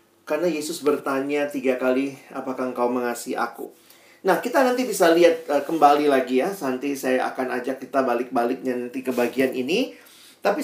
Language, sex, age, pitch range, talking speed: Indonesian, male, 40-59, 135-200 Hz, 160 wpm